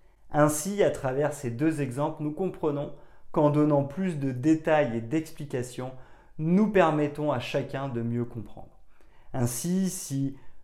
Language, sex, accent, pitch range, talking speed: French, male, French, 130-160 Hz, 135 wpm